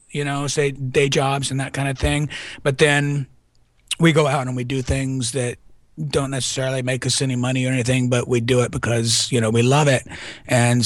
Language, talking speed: English, 215 wpm